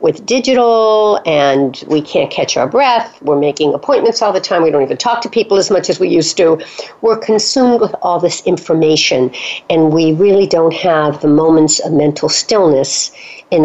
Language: English